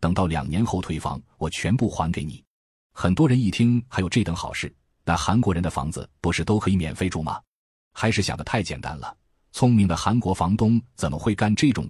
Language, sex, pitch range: Chinese, male, 80-110 Hz